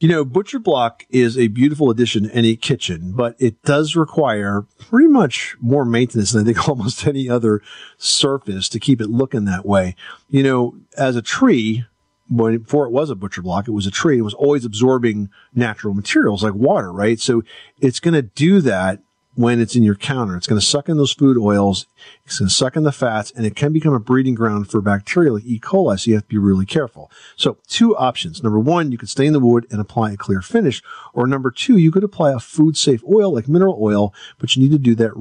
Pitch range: 110-135 Hz